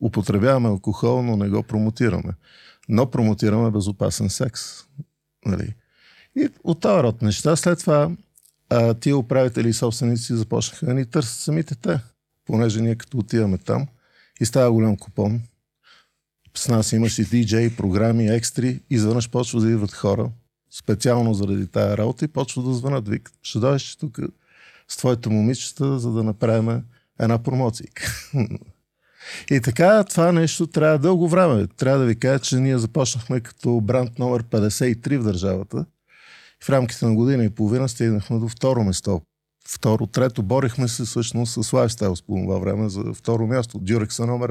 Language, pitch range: Bulgarian, 110-135 Hz